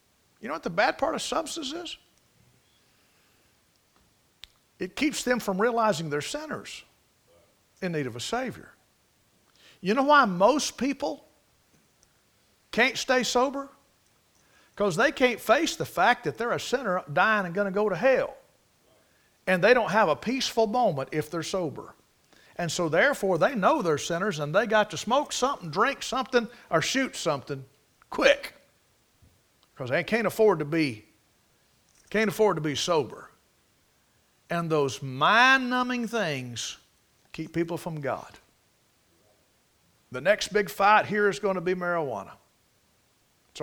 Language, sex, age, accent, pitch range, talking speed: English, male, 50-69, American, 150-225 Hz, 145 wpm